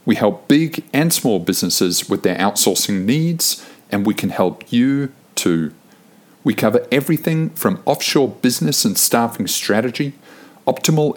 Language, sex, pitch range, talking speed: English, male, 105-140 Hz, 140 wpm